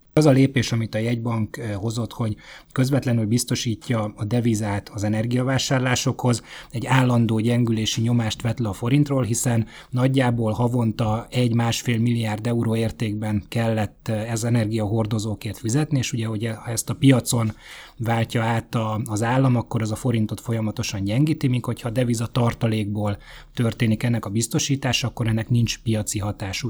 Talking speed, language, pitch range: 140 wpm, Hungarian, 110-125 Hz